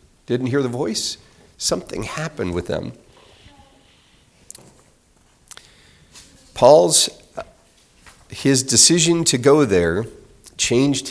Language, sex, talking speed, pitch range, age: English, male, 80 wpm, 95-130 Hz, 50-69